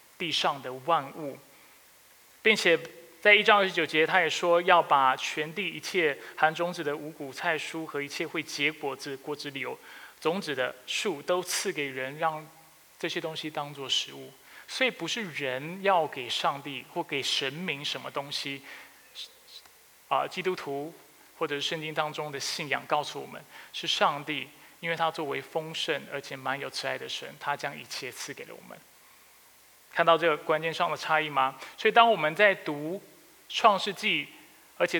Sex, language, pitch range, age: male, Chinese, 150-180 Hz, 20-39